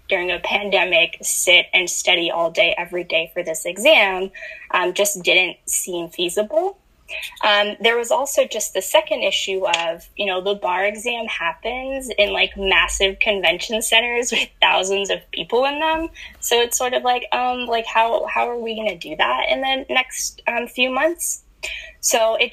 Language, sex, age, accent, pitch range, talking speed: English, female, 10-29, American, 185-275 Hz, 180 wpm